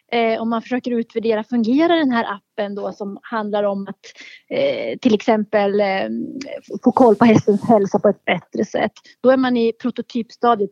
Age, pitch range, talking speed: 30-49, 225-270 Hz, 160 wpm